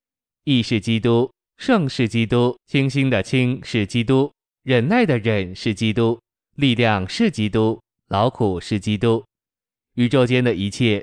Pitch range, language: 105-130 Hz, Chinese